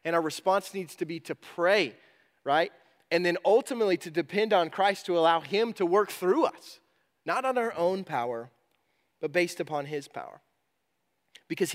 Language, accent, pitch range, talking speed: English, American, 160-195 Hz, 175 wpm